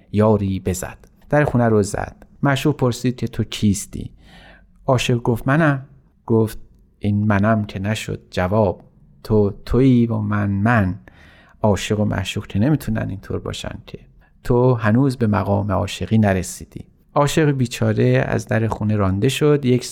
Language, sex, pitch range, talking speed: Persian, male, 100-130 Hz, 140 wpm